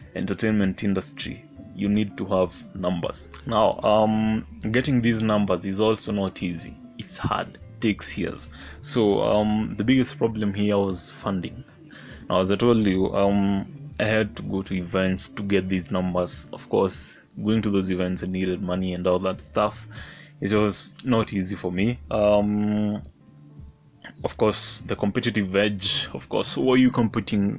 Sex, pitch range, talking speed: male, 95-110 Hz, 165 wpm